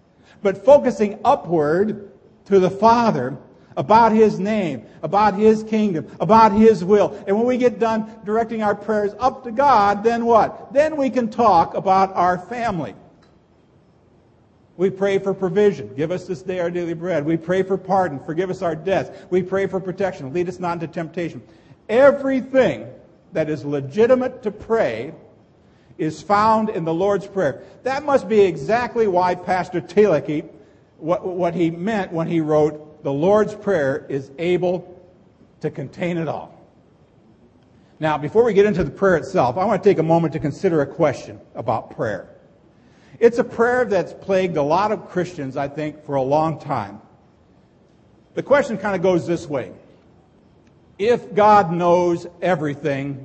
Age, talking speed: 50-69, 160 wpm